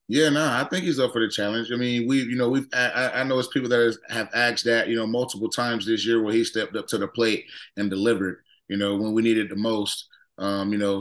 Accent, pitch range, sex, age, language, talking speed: American, 105-120 Hz, male, 20-39, English, 265 wpm